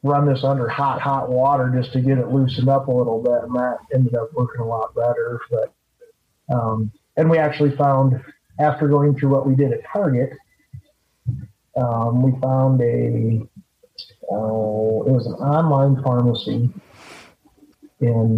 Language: English